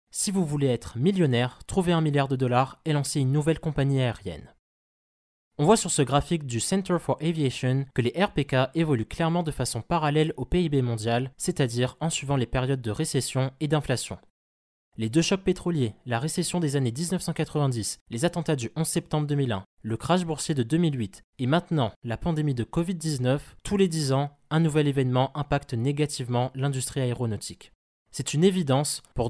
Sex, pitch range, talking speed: male, 120-160 Hz, 175 wpm